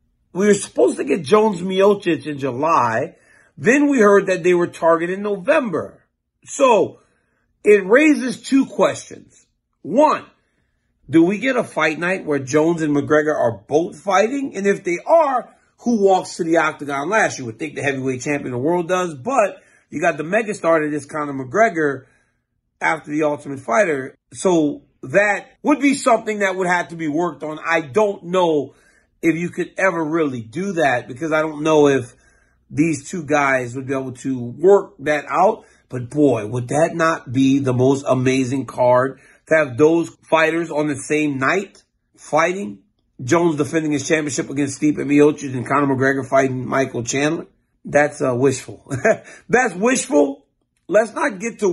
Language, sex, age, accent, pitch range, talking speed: English, male, 40-59, American, 140-190 Hz, 170 wpm